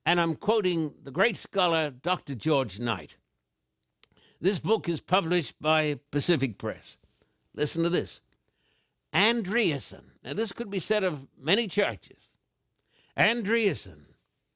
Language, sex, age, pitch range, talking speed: English, male, 60-79, 155-200 Hz, 120 wpm